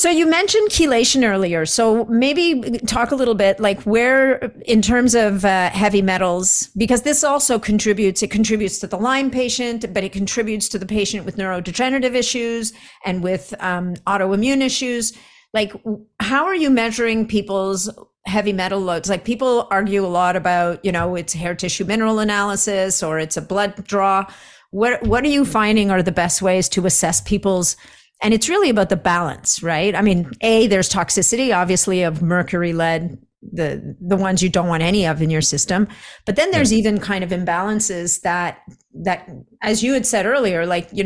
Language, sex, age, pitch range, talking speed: English, female, 50-69, 180-225 Hz, 185 wpm